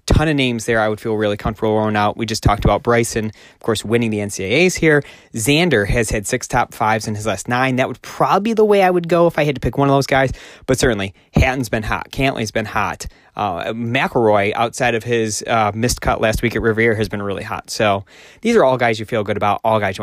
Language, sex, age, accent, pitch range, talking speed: English, male, 20-39, American, 110-135 Hz, 260 wpm